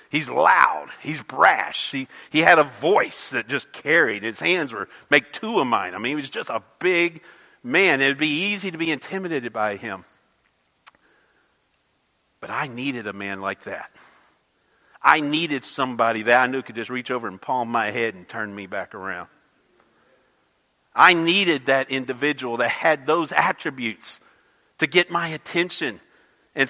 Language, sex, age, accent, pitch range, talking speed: English, male, 50-69, American, 145-205 Hz, 165 wpm